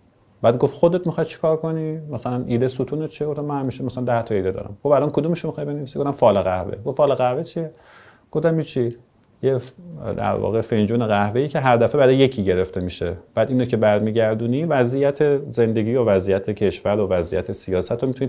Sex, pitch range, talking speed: male, 105-145 Hz, 195 wpm